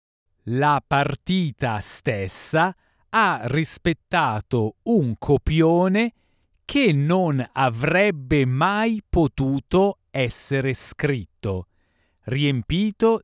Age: 40-59